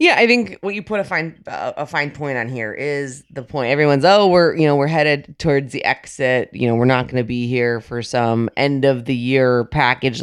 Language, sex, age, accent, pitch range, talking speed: English, female, 20-39, American, 130-160 Hz, 245 wpm